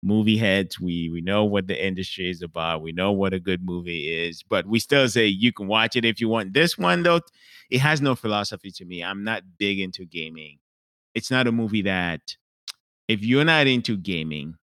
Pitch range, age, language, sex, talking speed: 90-120 Hz, 30-49, English, male, 215 wpm